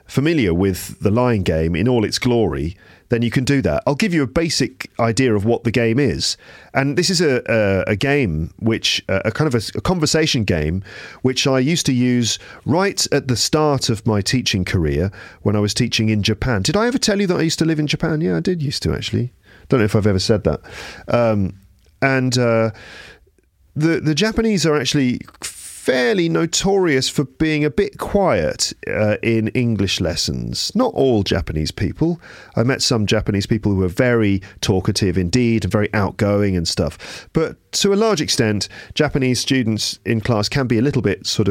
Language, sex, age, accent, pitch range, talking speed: English, male, 40-59, British, 100-140 Hz, 200 wpm